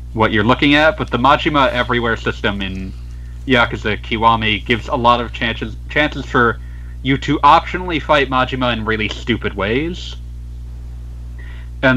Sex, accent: male, American